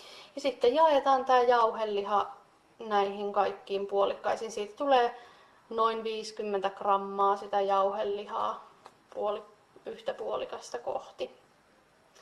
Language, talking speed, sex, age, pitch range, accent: Finnish, 95 wpm, female, 20-39, 200-250 Hz, native